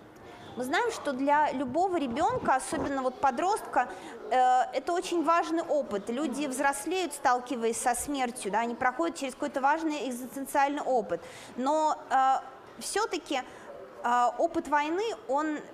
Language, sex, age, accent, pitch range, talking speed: Russian, female, 20-39, native, 255-335 Hz, 130 wpm